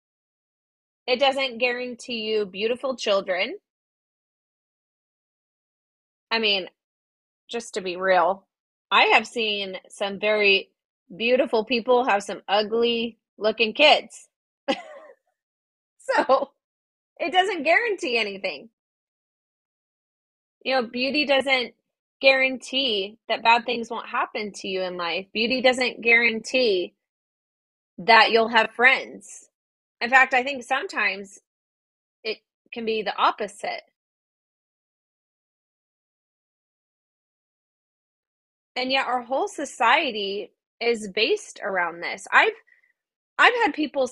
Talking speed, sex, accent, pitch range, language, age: 100 wpm, female, American, 215-270 Hz, English, 20-39